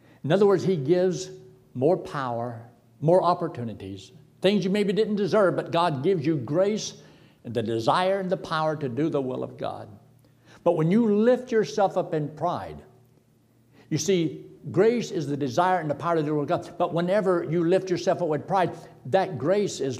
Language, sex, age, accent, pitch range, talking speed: English, male, 60-79, American, 130-185 Hz, 195 wpm